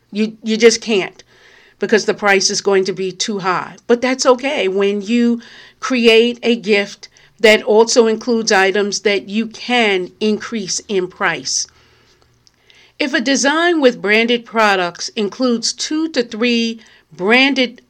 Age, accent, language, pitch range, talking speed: 50-69, American, English, 190-250 Hz, 140 wpm